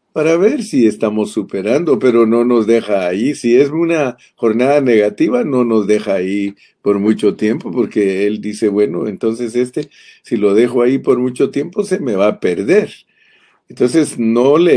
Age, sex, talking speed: 50-69, male, 175 wpm